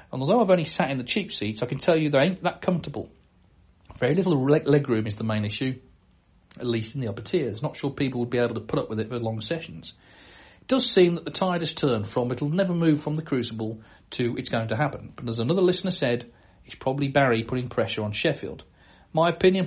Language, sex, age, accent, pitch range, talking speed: English, male, 40-59, British, 120-160 Hz, 240 wpm